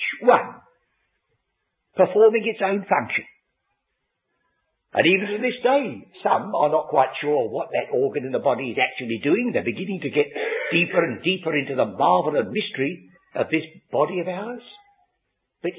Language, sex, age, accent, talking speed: English, male, 60-79, British, 160 wpm